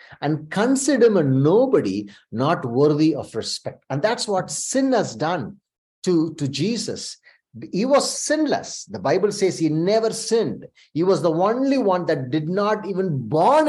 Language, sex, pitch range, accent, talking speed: English, male, 155-260 Hz, Indian, 160 wpm